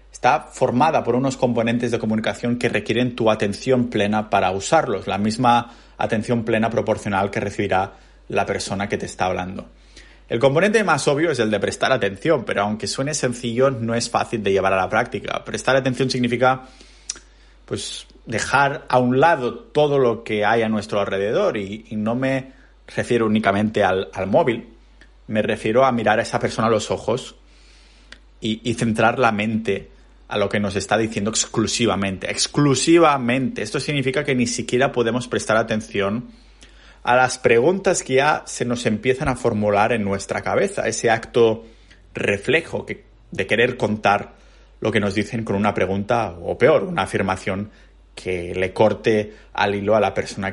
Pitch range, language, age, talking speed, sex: 100-130 Hz, Spanish, 30-49, 170 wpm, male